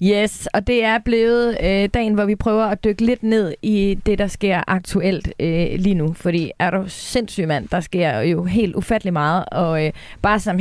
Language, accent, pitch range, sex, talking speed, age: Danish, native, 175-220 Hz, female, 210 wpm, 30-49